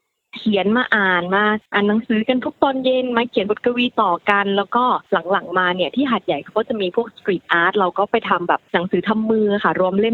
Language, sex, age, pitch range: Thai, female, 20-39, 190-245 Hz